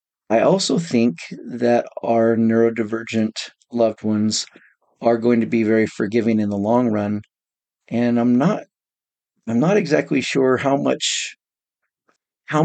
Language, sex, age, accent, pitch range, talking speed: English, male, 40-59, American, 110-130 Hz, 130 wpm